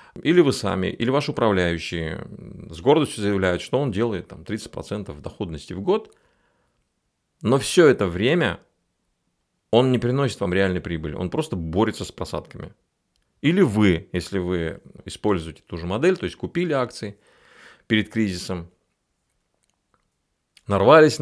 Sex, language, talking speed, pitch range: male, Russian, 135 wpm, 90-115 Hz